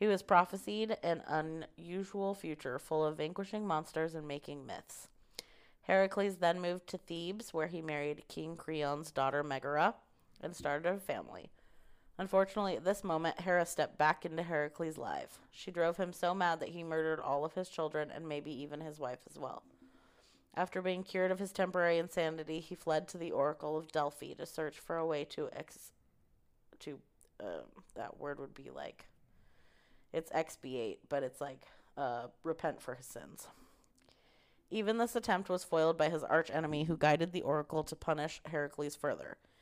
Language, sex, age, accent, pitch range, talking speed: English, female, 30-49, American, 150-180 Hz, 170 wpm